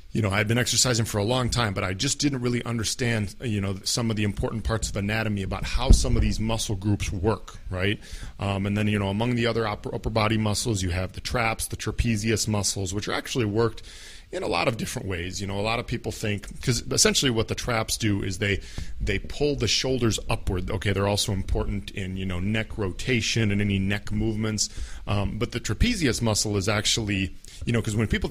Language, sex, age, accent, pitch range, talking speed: English, male, 40-59, American, 95-115 Hz, 225 wpm